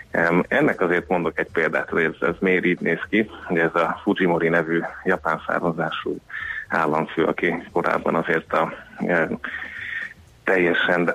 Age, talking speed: 30-49, 140 wpm